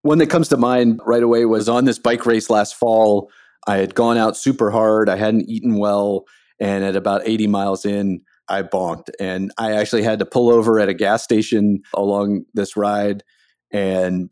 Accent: American